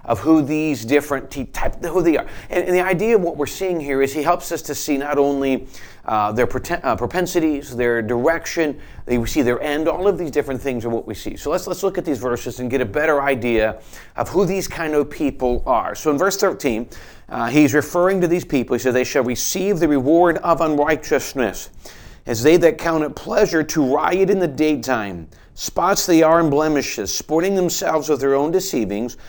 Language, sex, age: English, male, 40-59